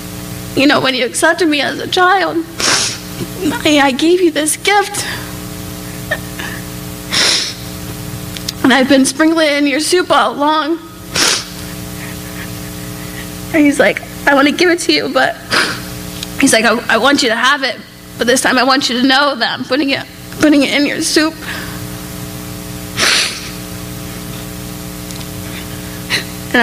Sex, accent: female, American